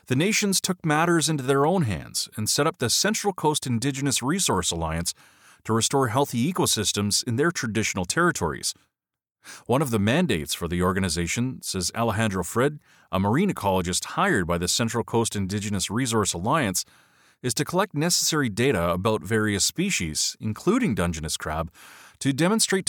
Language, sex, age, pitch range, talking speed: English, male, 30-49, 100-150 Hz, 155 wpm